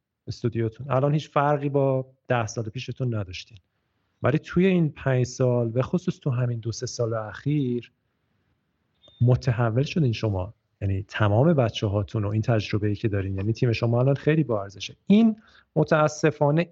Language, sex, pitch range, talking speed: Persian, male, 115-145 Hz, 150 wpm